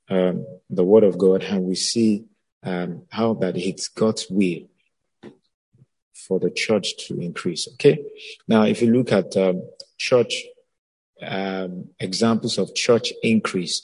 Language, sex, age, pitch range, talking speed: English, male, 50-69, 95-115 Hz, 140 wpm